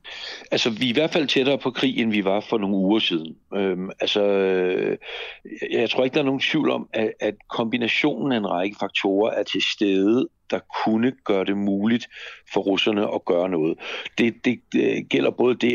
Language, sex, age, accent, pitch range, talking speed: Danish, male, 60-79, native, 105-160 Hz, 190 wpm